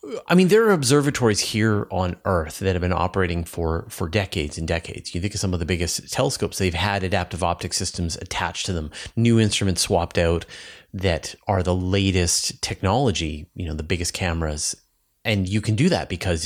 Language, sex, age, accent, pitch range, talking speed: English, male, 30-49, American, 85-105 Hz, 195 wpm